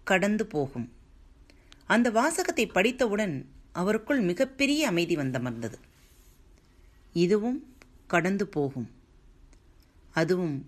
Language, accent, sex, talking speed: Tamil, native, female, 75 wpm